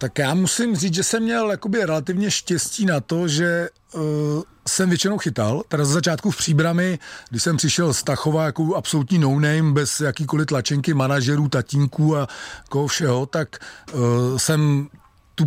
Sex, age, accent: male, 40-59, native